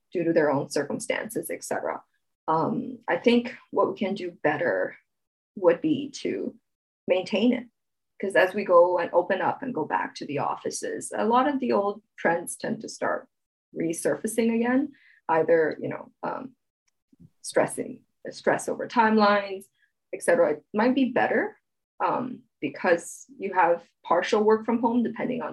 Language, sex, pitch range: English, female, 195-285 Hz